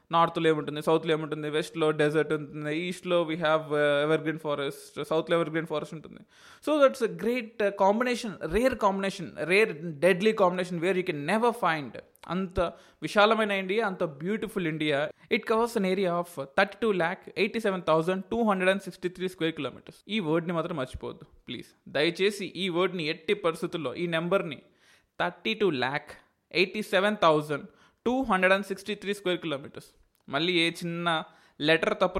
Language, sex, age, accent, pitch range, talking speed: Telugu, male, 20-39, native, 155-200 Hz, 155 wpm